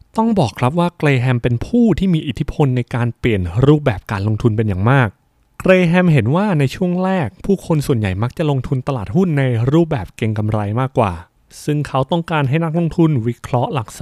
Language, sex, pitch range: Thai, male, 120-155 Hz